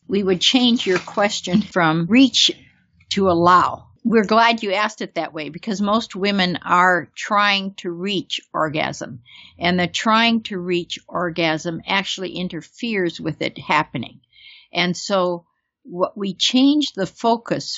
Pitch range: 165-205 Hz